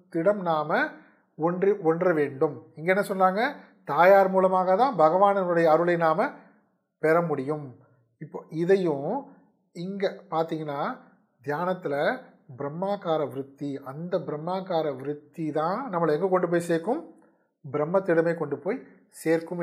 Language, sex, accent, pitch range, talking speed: Tamil, male, native, 155-205 Hz, 110 wpm